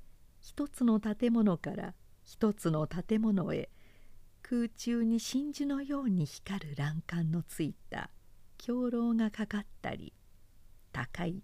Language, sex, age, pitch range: Japanese, female, 50-69, 145-225 Hz